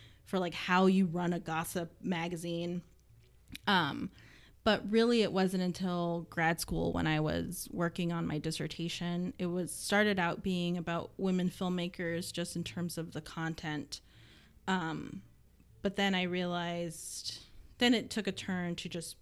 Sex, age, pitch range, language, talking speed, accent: female, 20-39, 160-185 Hz, English, 155 wpm, American